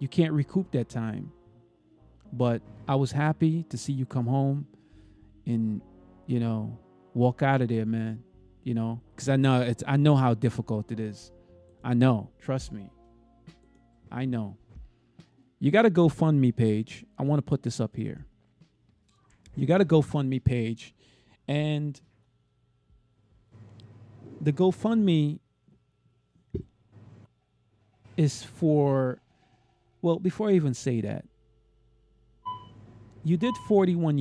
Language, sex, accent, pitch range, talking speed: English, male, American, 115-155 Hz, 130 wpm